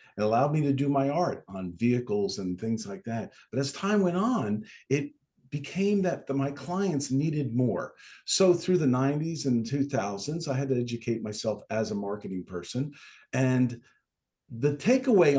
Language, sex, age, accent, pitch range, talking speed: English, male, 50-69, American, 110-150 Hz, 170 wpm